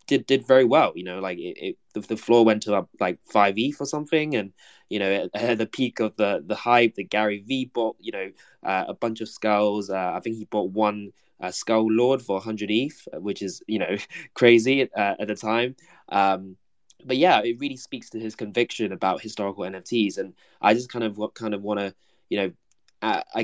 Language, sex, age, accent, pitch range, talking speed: English, male, 20-39, British, 100-115 Hz, 220 wpm